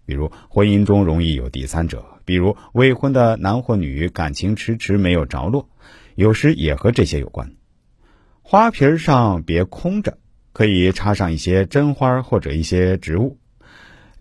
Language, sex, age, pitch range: Chinese, male, 50-69, 80-125 Hz